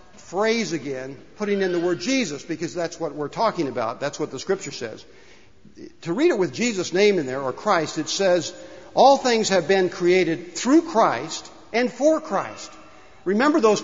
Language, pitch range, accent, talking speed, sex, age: English, 180-250 Hz, American, 180 wpm, male, 60-79